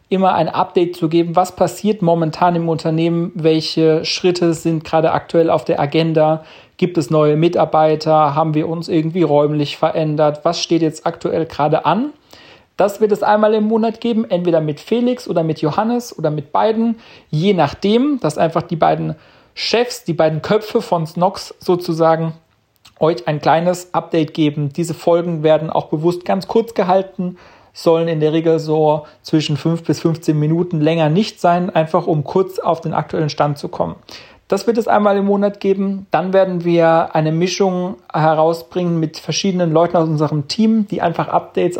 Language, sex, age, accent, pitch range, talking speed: German, male, 40-59, German, 160-190 Hz, 170 wpm